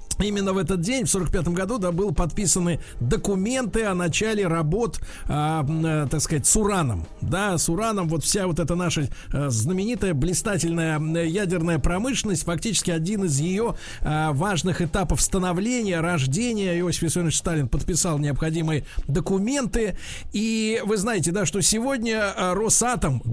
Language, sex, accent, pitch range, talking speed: Russian, male, native, 160-205 Hz, 135 wpm